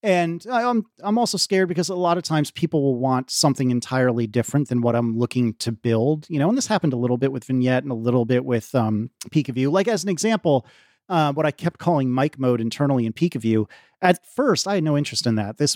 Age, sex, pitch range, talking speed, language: 30-49, male, 120-165 Hz, 250 wpm, English